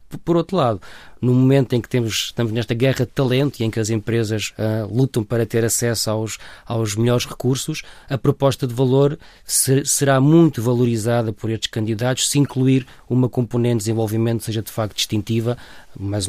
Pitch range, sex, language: 110-130 Hz, male, Portuguese